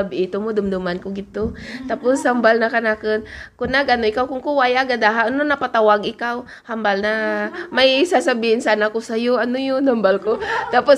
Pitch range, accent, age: 210-285 Hz, native, 20-39